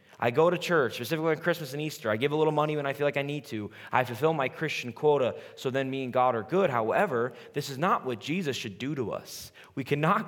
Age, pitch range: 20-39, 115-150 Hz